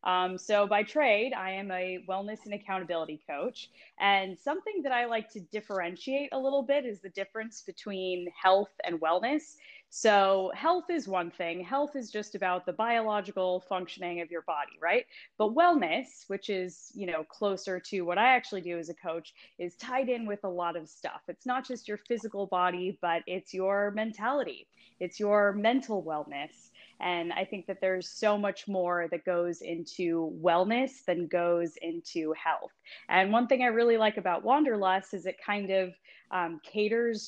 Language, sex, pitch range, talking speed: English, female, 180-230 Hz, 180 wpm